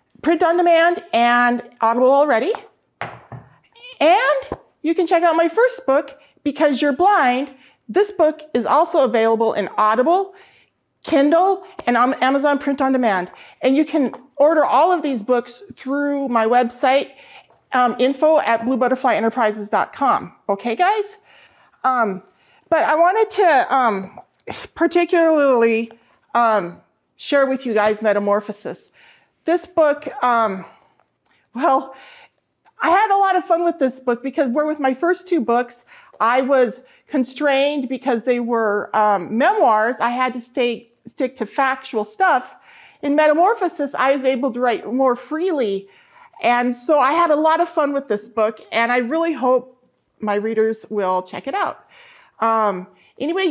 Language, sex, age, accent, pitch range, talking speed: English, female, 40-59, American, 235-330 Hz, 145 wpm